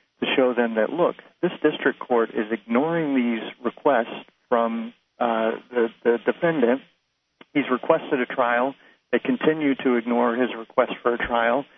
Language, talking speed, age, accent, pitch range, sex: English, 155 wpm, 40-59, American, 115-130 Hz, male